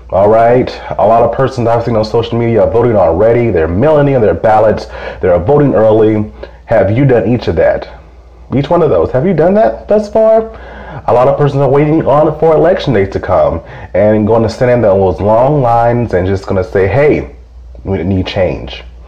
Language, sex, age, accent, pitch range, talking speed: English, male, 30-49, American, 90-120 Hz, 205 wpm